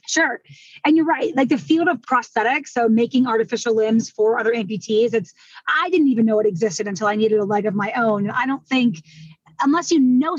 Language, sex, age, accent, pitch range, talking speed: English, female, 20-39, American, 230-285 Hz, 220 wpm